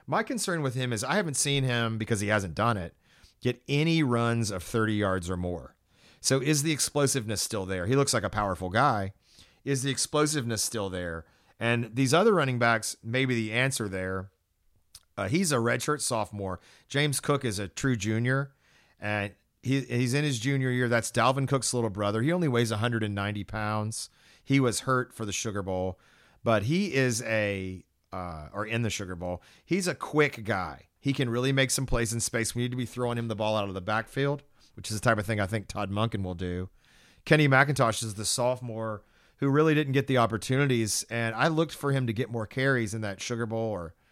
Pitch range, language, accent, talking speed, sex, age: 100-130 Hz, English, American, 210 wpm, male, 40-59